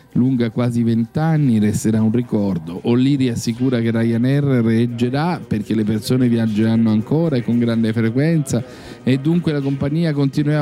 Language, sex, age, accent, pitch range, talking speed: Italian, male, 50-69, native, 110-165 Hz, 140 wpm